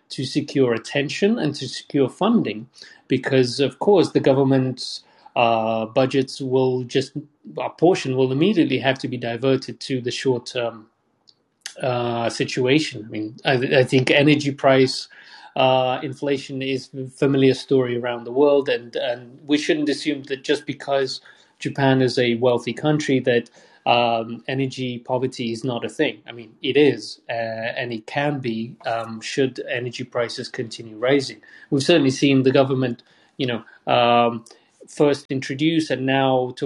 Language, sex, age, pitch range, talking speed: English, male, 30-49, 120-145 Hz, 155 wpm